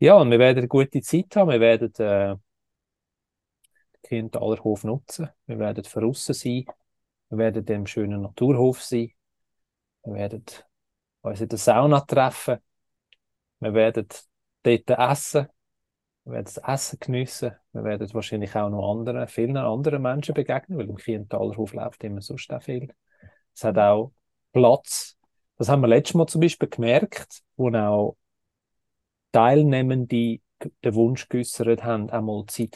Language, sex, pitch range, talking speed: German, male, 110-130 Hz, 150 wpm